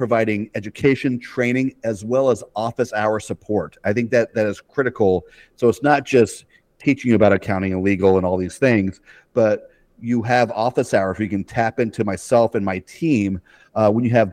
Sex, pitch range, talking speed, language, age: male, 95-115 Hz, 195 wpm, English, 40-59